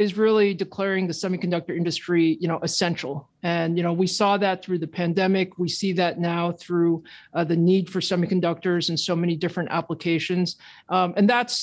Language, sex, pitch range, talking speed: English, male, 175-205 Hz, 185 wpm